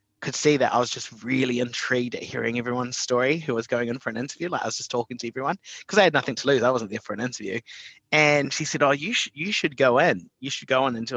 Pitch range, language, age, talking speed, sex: 120-145 Hz, English, 30-49, 285 wpm, male